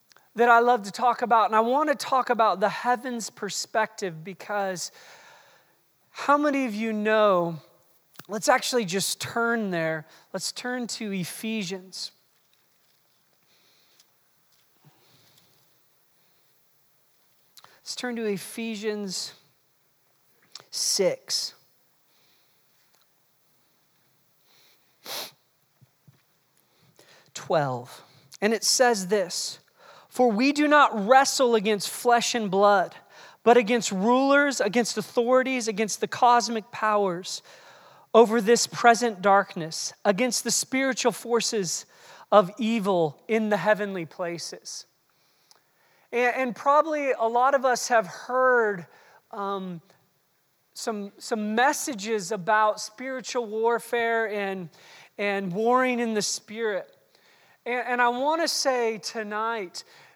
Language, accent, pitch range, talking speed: English, American, 200-245 Hz, 100 wpm